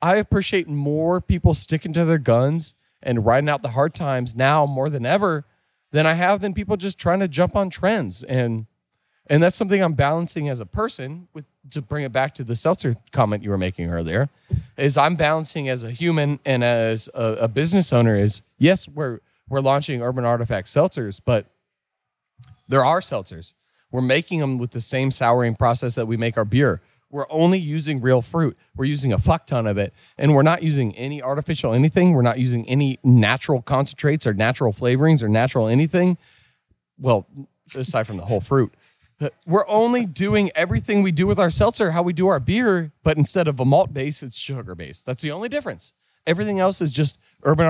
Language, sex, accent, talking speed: English, male, American, 200 wpm